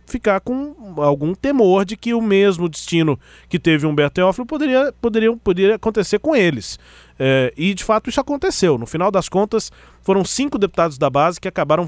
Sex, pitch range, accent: male, 150-210 Hz, Brazilian